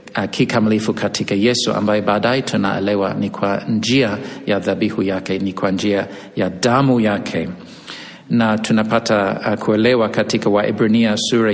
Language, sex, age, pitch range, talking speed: Swahili, male, 50-69, 105-125 Hz, 130 wpm